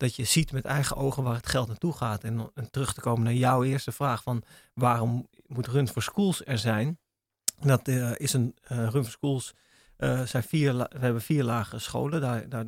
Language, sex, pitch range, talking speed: Dutch, male, 115-130 Hz, 205 wpm